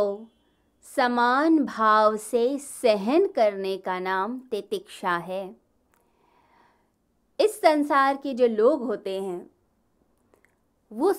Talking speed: 90 wpm